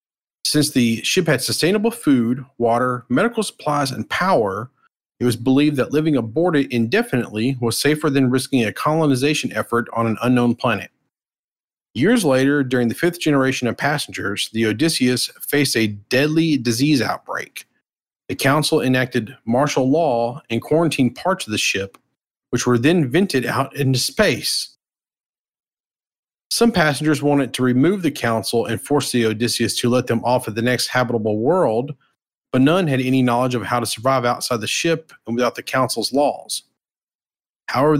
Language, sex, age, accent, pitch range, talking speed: English, male, 40-59, American, 120-145 Hz, 160 wpm